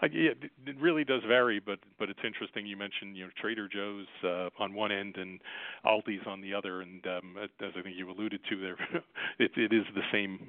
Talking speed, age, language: 225 wpm, 40-59, English